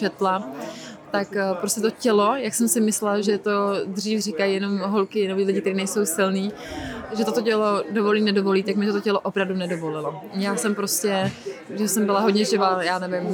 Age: 20-39